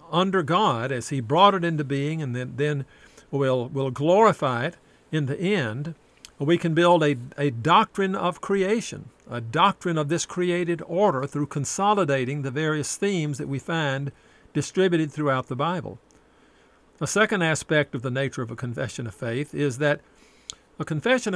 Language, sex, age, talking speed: English, male, 50-69, 165 wpm